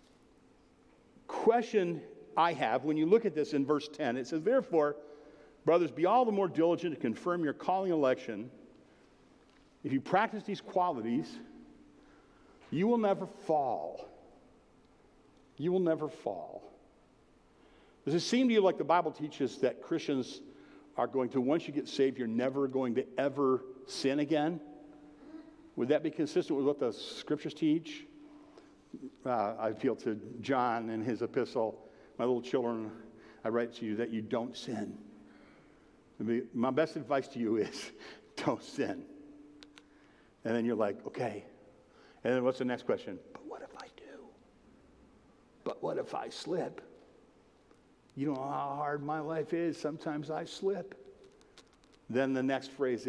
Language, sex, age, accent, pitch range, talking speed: English, male, 50-69, American, 130-180 Hz, 155 wpm